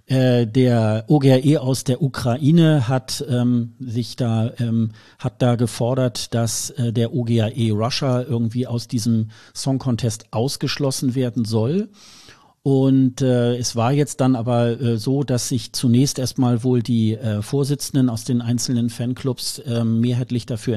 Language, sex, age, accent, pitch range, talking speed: German, male, 50-69, German, 115-130 Hz, 145 wpm